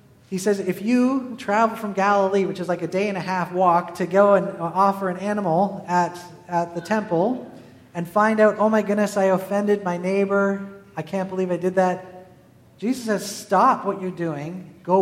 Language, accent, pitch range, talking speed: English, American, 175-210 Hz, 195 wpm